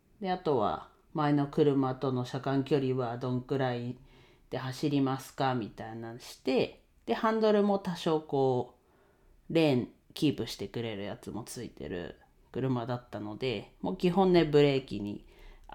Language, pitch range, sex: Japanese, 120-160 Hz, female